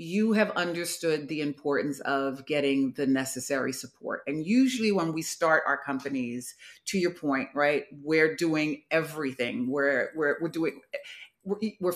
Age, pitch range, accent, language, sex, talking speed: 40-59, 145-185 Hz, American, English, female, 150 wpm